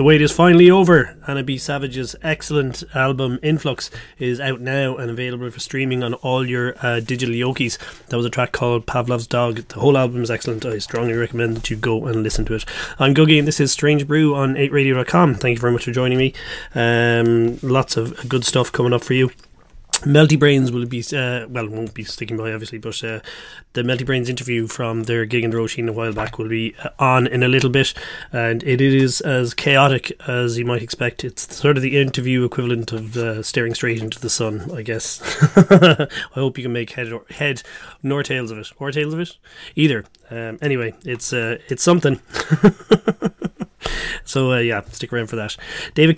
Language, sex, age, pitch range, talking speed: English, male, 30-49, 120-140 Hz, 210 wpm